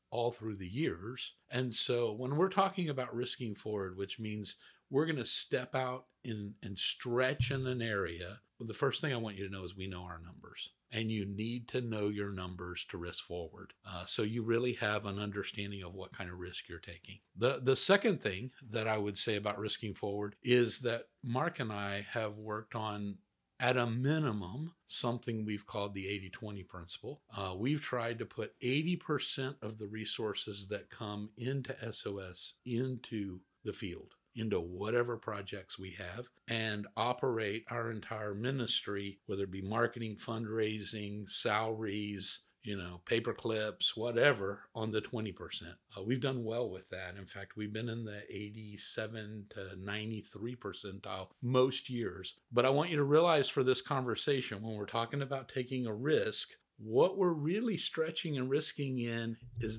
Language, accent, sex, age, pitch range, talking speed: English, American, male, 50-69, 100-125 Hz, 175 wpm